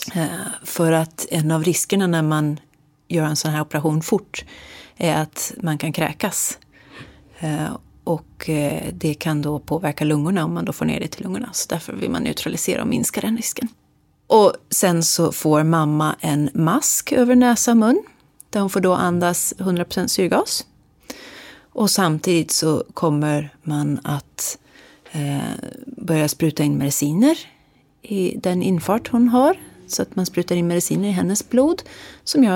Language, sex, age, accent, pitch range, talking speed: Swedish, female, 30-49, native, 155-225 Hz, 155 wpm